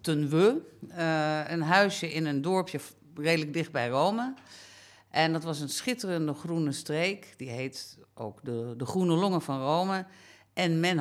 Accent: Dutch